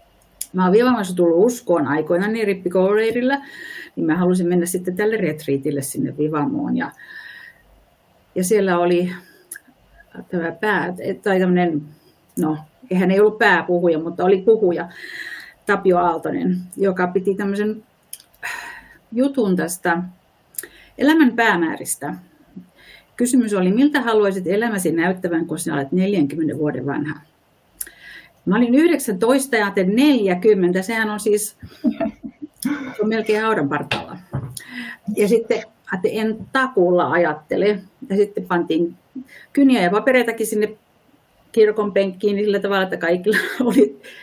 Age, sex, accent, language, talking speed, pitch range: 50-69, female, native, Finnish, 115 wpm, 175-220 Hz